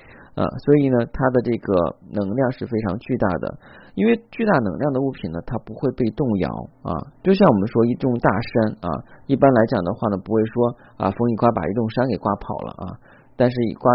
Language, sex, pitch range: Chinese, male, 105-130 Hz